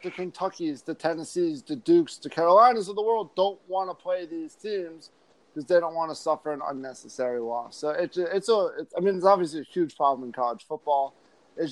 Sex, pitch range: male, 145-190 Hz